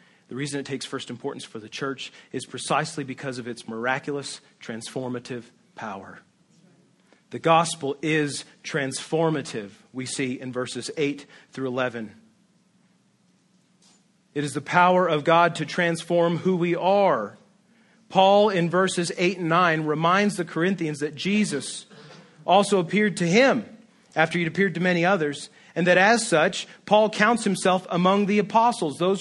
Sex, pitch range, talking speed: male, 155-205 Hz, 150 wpm